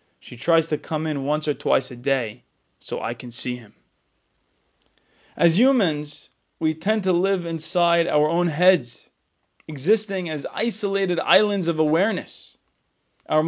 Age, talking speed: 20-39, 140 wpm